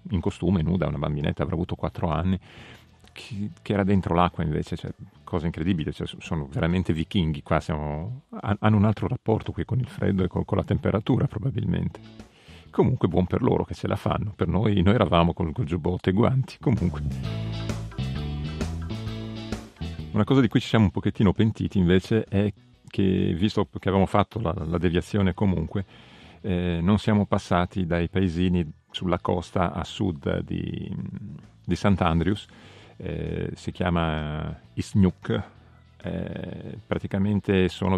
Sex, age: male, 40-59